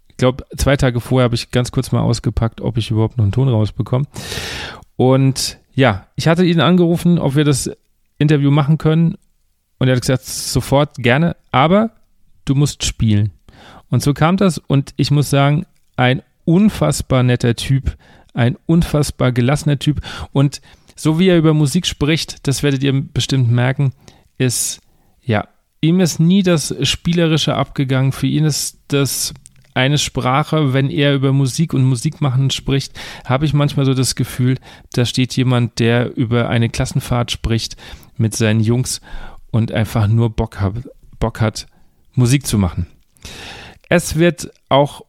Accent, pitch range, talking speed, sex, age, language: German, 120-150 Hz, 160 wpm, male, 40-59, German